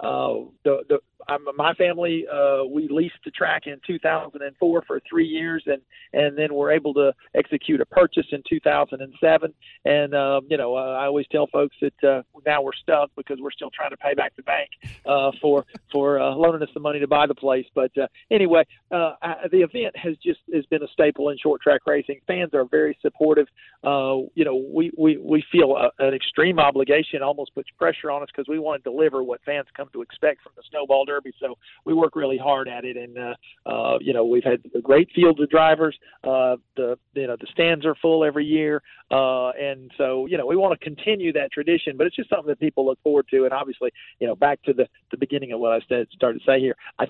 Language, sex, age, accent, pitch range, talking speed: English, male, 50-69, American, 135-160 Hz, 230 wpm